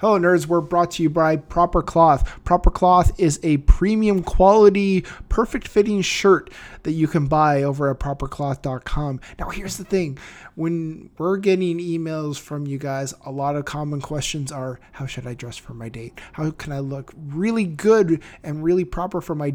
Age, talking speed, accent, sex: 20-39, 185 wpm, American, male